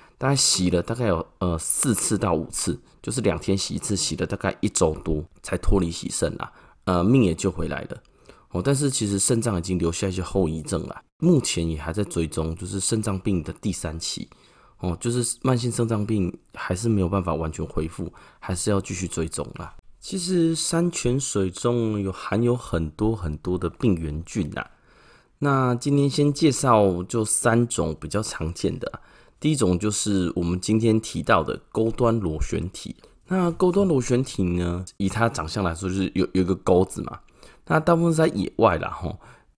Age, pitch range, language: 20-39, 90-120 Hz, Chinese